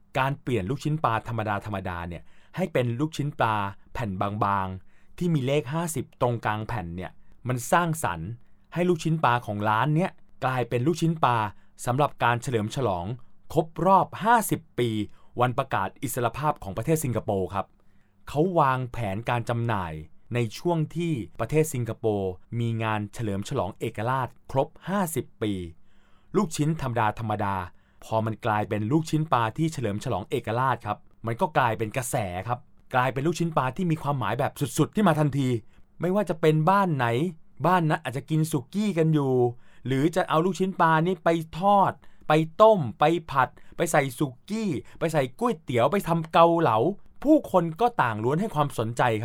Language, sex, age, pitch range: Thai, male, 20-39, 110-160 Hz